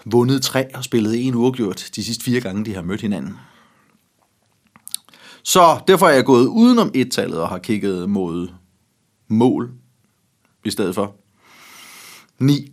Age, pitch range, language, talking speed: 30-49, 100-125 Hz, Danish, 140 wpm